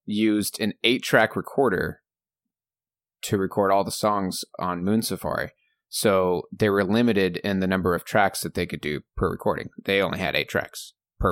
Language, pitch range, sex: English, 95-110 Hz, male